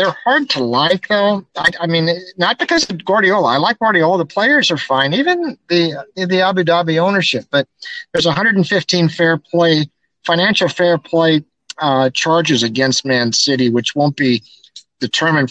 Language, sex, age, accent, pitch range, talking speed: English, male, 50-69, American, 135-175 Hz, 165 wpm